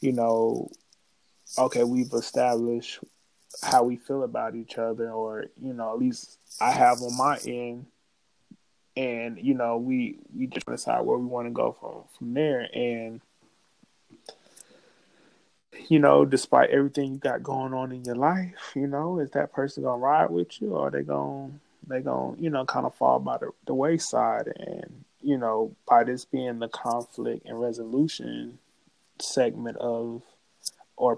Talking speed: 165 wpm